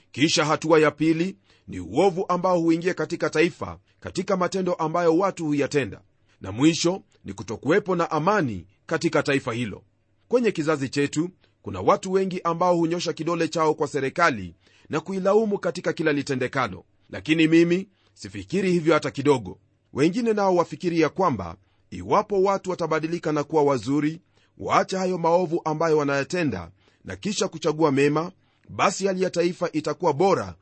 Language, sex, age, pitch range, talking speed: Swahili, male, 40-59, 125-175 Hz, 140 wpm